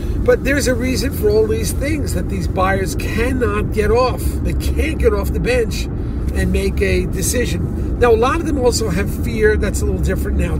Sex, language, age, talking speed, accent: male, English, 50-69, 210 wpm, American